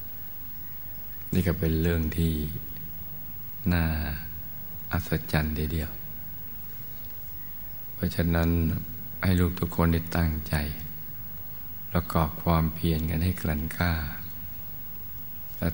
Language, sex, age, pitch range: Thai, male, 60-79, 80-85 Hz